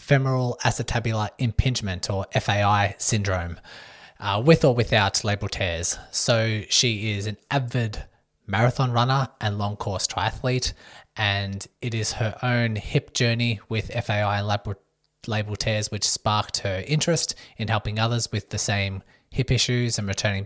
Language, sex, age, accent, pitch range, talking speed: English, male, 20-39, Australian, 100-120 Hz, 145 wpm